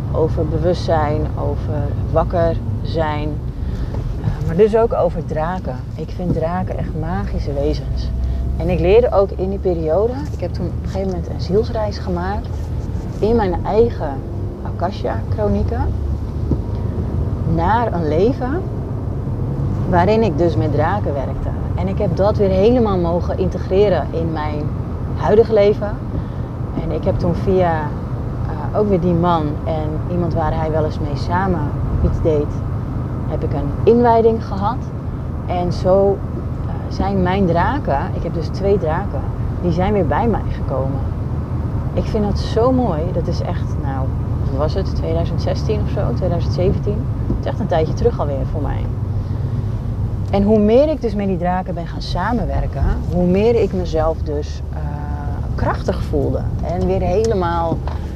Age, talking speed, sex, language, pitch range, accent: 30-49, 150 wpm, female, Dutch, 100-130 Hz, Dutch